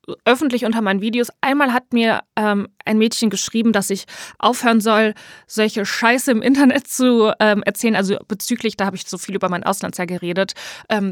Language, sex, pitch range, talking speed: German, female, 195-230 Hz, 185 wpm